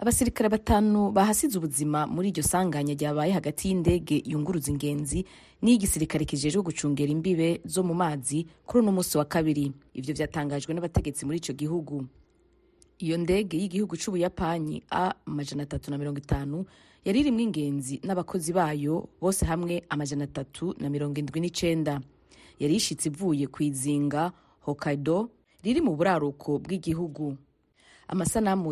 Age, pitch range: 30-49, 150-185 Hz